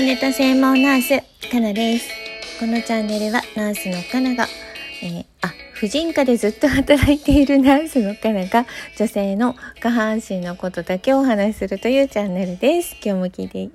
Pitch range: 180-255 Hz